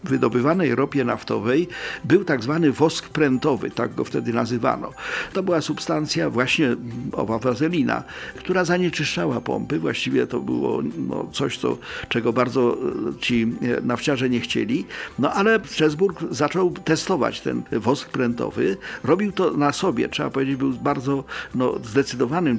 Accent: native